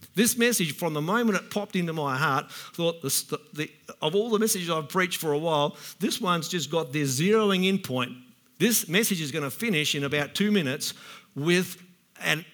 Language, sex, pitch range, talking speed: English, male, 155-210 Hz, 190 wpm